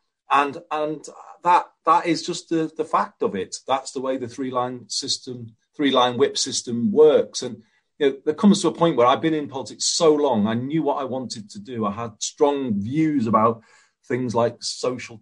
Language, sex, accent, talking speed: English, male, British, 200 wpm